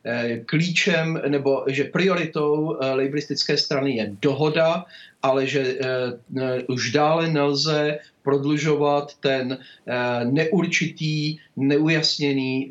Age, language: 40-59, Czech